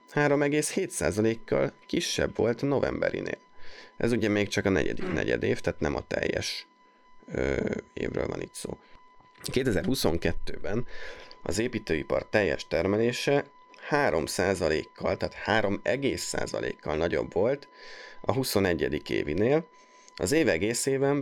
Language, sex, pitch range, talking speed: Hungarian, male, 95-150 Hz, 105 wpm